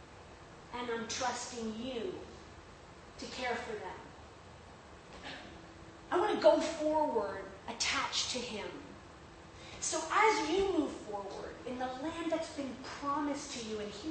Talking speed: 130 wpm